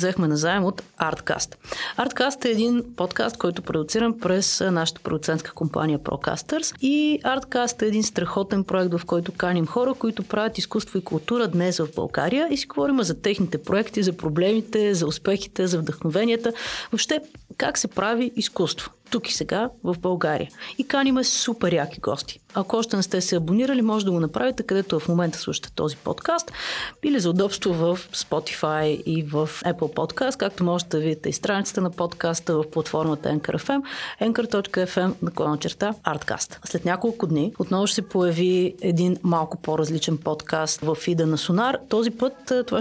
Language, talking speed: Bulgarian, 170 wpm